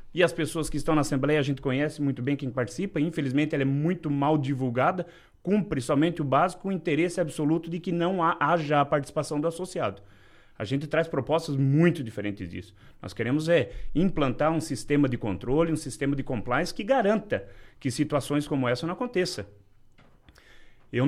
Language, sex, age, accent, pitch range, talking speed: Portuguese, male, 30-49, Brazilian, 125-170 Hz, 180 wpm